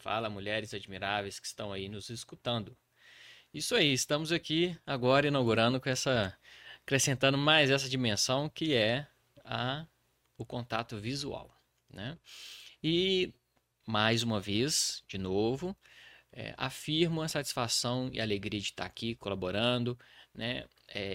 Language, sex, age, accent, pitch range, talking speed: Portuguese, male, 20-39, Brazilian, 115-145 Hz, 130 wpm